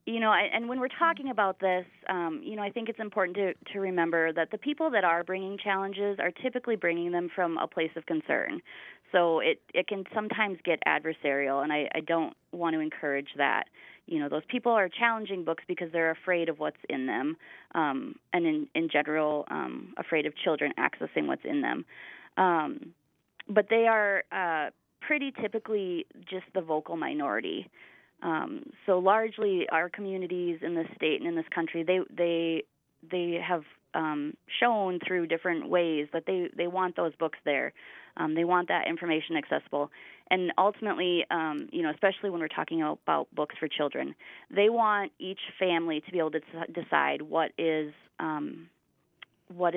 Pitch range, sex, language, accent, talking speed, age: 165-210 Hz, female, English, American, 175 wpm, 20-39